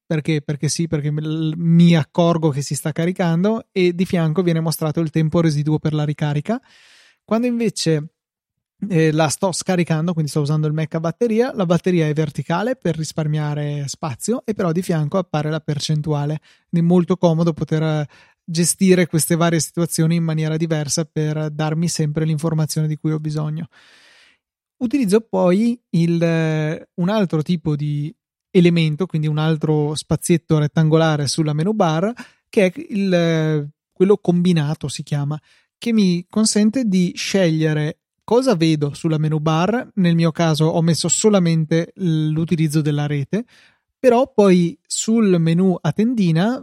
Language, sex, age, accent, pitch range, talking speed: Italian, male, 30-49, native, 155-185 Hz, 145 wpm